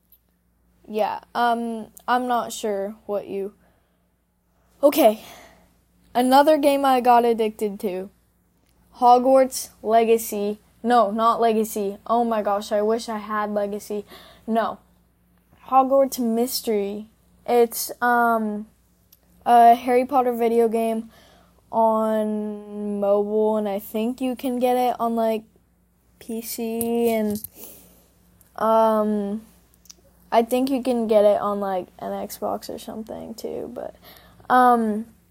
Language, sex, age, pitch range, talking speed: English, female, 10-29, 210-245 Hz, 110 wpm